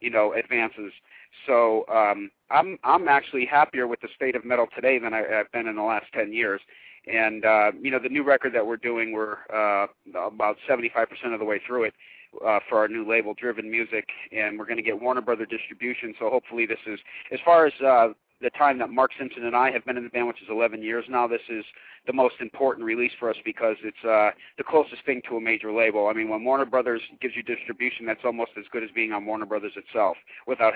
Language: English